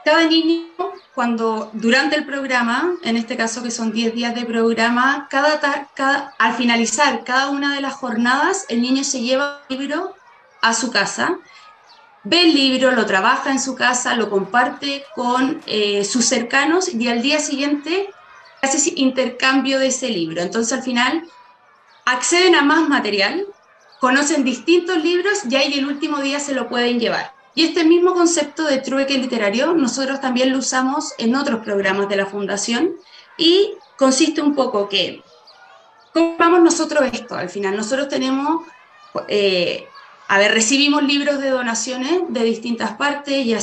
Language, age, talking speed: Spanish, 20-39, 160 wpm